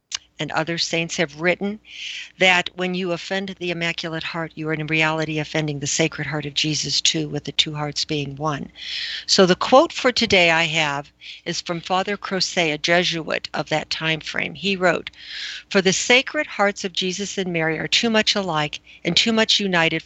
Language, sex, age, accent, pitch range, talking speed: English, female, 60-79, American, 155-200 Hz, 190 wpm